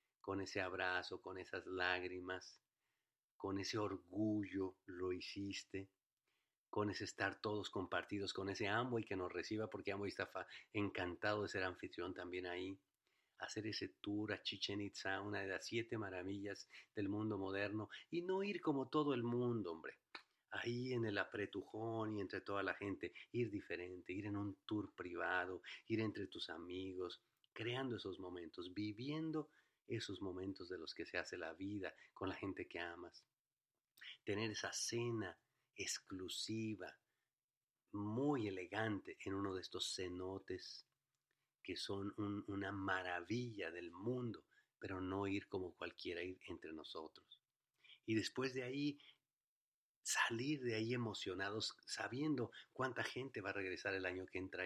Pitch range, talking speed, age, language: 95-115 Hz, 150 wpm, 50-69, English